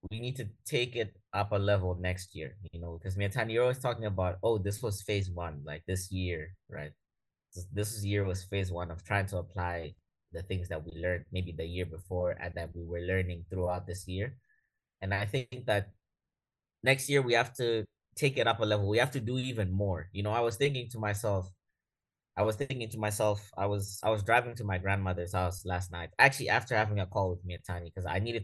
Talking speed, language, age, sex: 230 wpm, English, 20-39, male